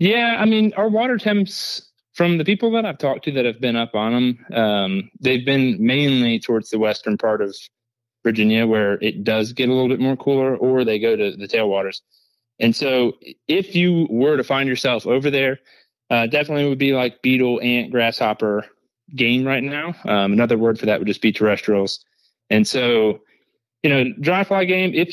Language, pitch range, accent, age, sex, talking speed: English, 115-140 Hz, American, 30-49, male, 195 wpm